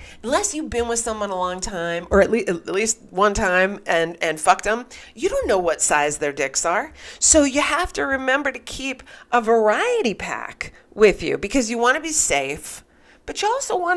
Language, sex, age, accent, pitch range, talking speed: English, female, 40-59, American, 195-310 Hz, 210 wpm